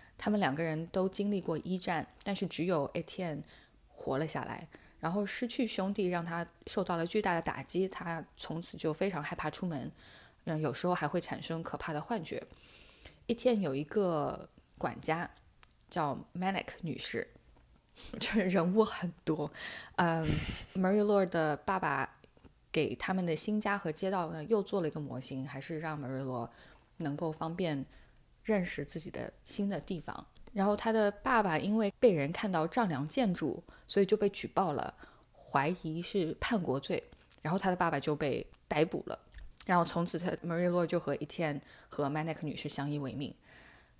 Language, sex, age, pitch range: Chinese, female, 10-29, 150-195 Hz